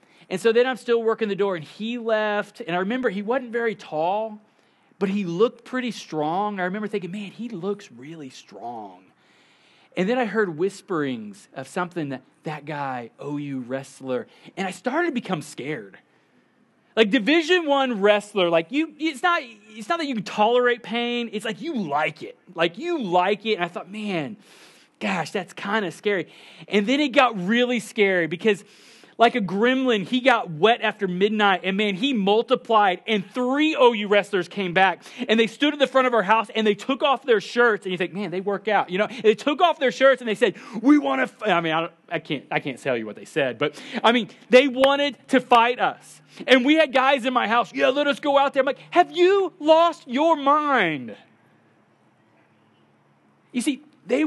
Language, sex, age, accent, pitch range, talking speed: English, male, 30-49, American, 195-260 Hz, 210 wpm